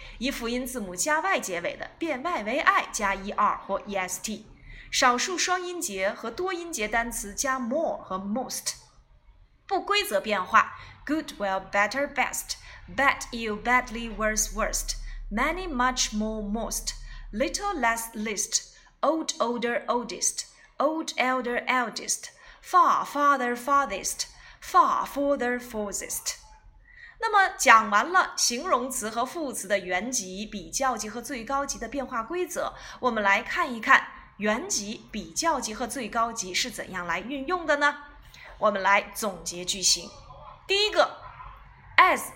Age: 20-39